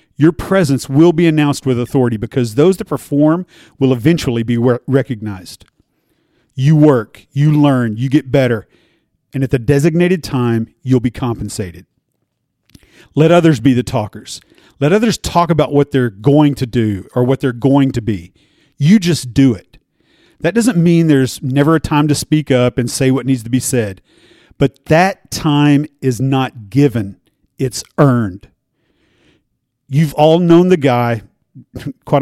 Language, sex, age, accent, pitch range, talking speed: English, male, 40-59, American, 120-150 Hz, 160 wpm